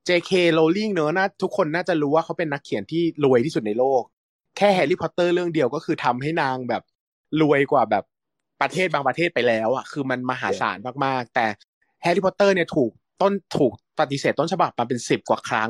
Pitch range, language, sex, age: 130-180 Hz, Thai, male, 20-39